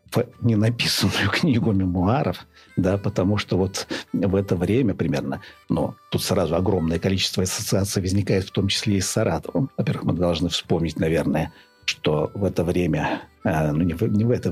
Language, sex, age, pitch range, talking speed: Russian, male, 50-69, 90-110 Hz, 175 wpm